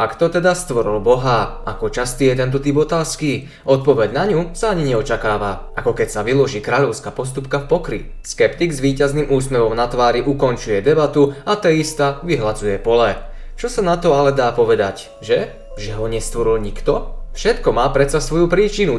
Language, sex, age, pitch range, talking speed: Slovak, male, 20-39, 125-170 Hz, 170 wpm